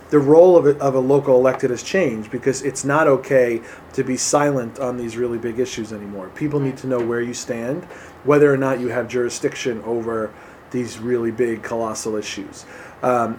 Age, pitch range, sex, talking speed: 20-39, 120-145 Hz, male, 195 wpm